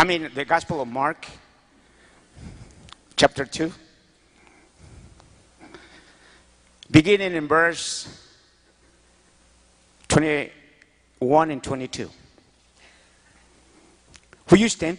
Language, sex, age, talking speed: English, male, 50-69, 70 wpm